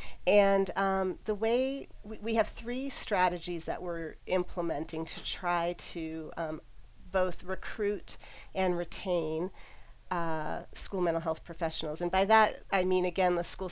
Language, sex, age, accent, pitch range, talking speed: English, female, 40-59, American, 170-195 Hz, 145 wpm